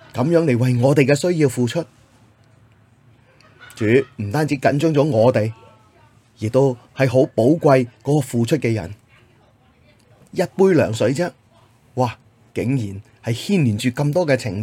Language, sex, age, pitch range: Chinese, male, 30-49, 115-140 Hz